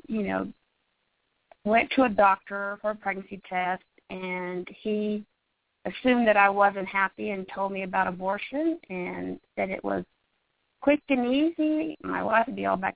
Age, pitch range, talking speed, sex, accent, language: 40-59, 185-265 Hz, 160 wpm, female, American, English